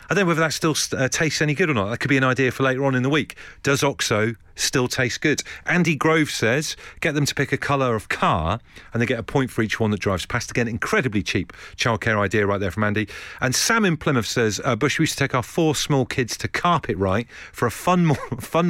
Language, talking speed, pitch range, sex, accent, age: English, 260 wpm, 115-165 Hz, male, British, 40-59